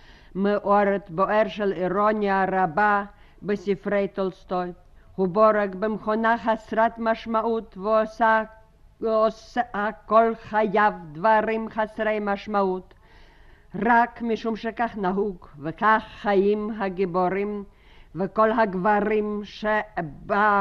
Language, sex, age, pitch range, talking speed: Hebrew, female, 50-69, 180-220 Hz, 80 wpm